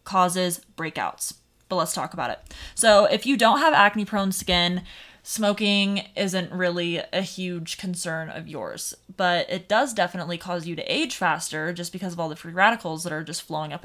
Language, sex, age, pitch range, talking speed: English, female, 20-39, 175-205 Hz, 190 wpm